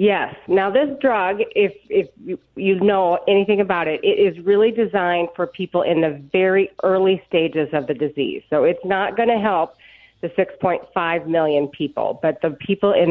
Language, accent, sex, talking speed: English, American, female, 180 wpm